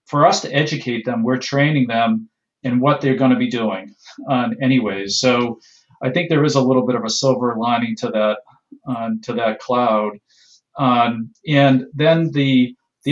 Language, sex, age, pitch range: English, male, 40-59, 115-140 Hz